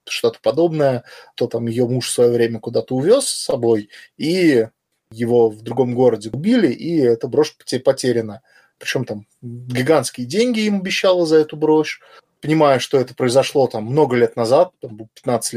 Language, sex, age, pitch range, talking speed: Russian, male, 20-39, 120-155 Hz, 160 wpm